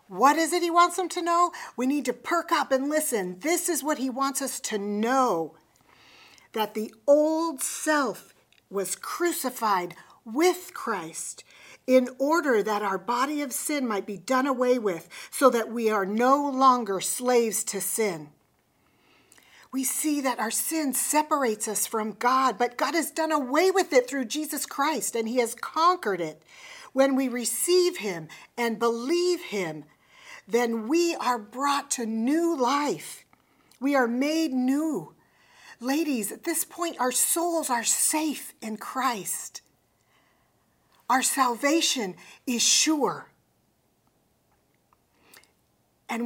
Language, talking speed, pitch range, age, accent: English, 140 wpm, 225-310 Hz, 50-69, American